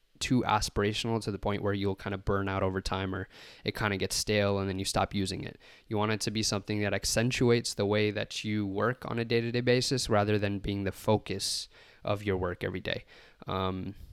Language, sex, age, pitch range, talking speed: English, male, 20-39, 100-115 Hz, 225 wpm